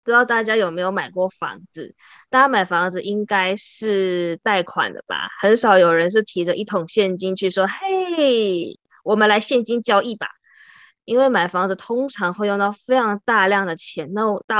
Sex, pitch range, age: female, 180-220 Hz, 20-39